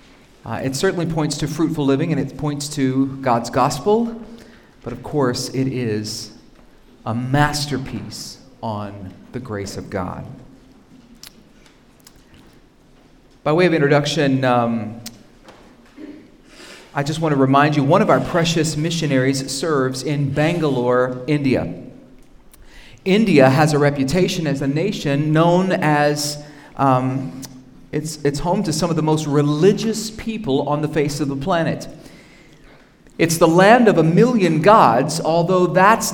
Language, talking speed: English, 135 wpm